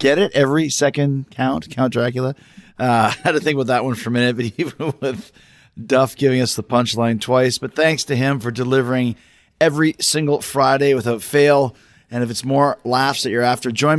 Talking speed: 200 wpm